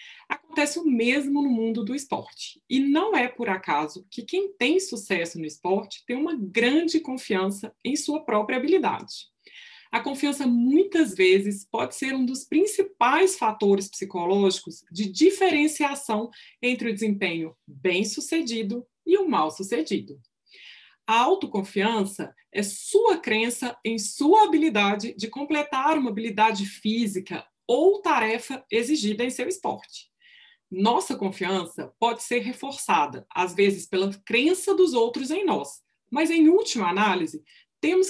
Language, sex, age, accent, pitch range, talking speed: Portuguese, female, 20-39, Brazilian, 205-315 Hz, 135 wpm